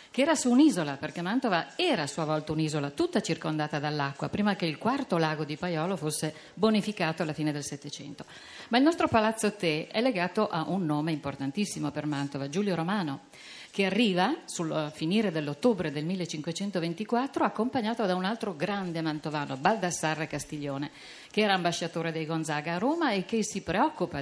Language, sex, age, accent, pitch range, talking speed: Italian, female, 50-69, native, 150-210 Hz, 170 wpm